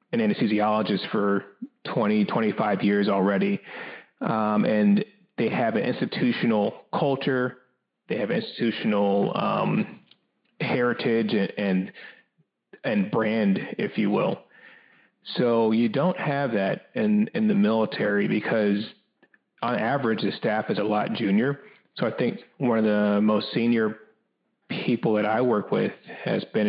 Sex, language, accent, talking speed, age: male, English, American, 135 wpm, 30-49